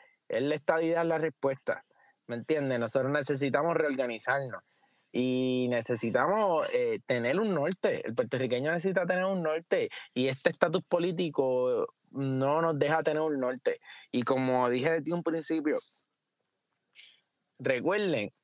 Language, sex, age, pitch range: Spanish, male, 20-39, 140-215 Hz